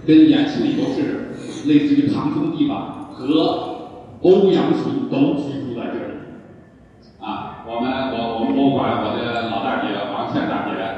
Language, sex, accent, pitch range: Chinese, male, native, 205-300 Hz